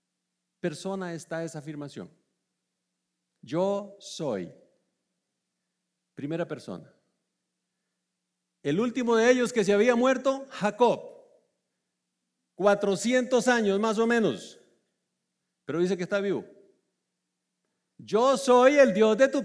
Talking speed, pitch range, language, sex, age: 100 wpm, 195-260 Hz, Spanish, male, 50-69